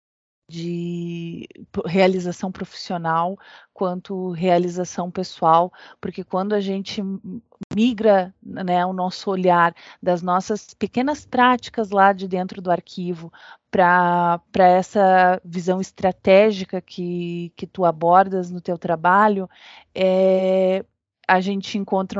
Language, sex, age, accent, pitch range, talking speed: Portuguese, female, 20-39, Brazilian, 180-200 Hz, 105 wpm